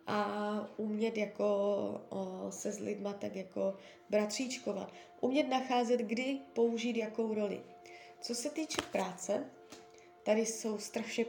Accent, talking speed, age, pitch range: native, 115 wpm, 20-39, 210-255 Hz